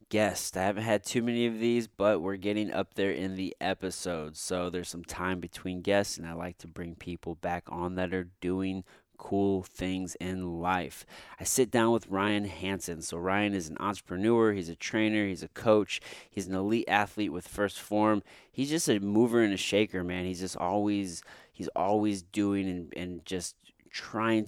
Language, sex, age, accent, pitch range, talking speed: English, male, 20-39, American, 90-105 Hz, 195 wpm